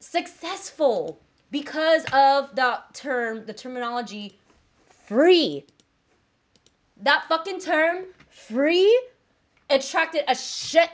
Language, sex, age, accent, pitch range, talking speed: English, female, 20-39, American, 235-315 Hz, 80 wpm